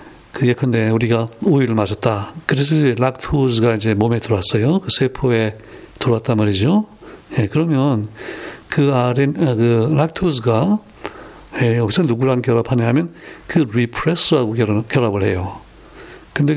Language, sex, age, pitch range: Korean, male, 60-79, 120-150 Hz